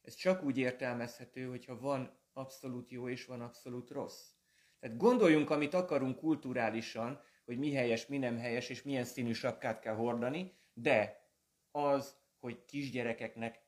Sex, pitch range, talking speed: male, 115-145 Hz, 145 wpm